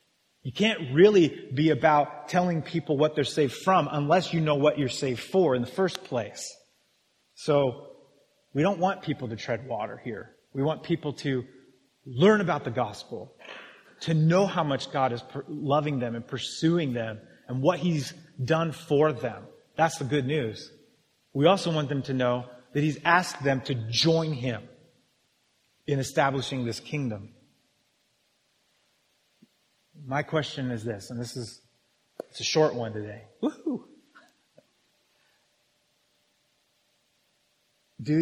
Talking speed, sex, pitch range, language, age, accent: 145 wpm, male, 125-165 Hz, English, 30-49, American